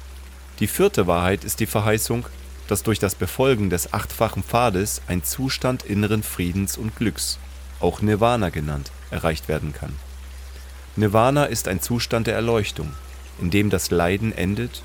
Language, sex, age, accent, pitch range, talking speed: German, male, 30-49, German, 75-110 Hz, 145 wpm